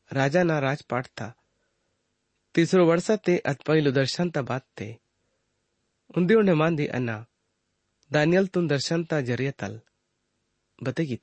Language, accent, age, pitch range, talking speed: English, Indian, 30-49, 115-165 Hz, 125 wpm